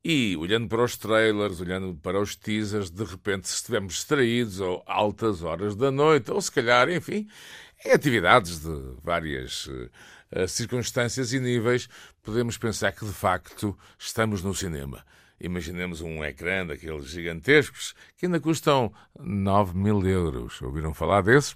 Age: 50-69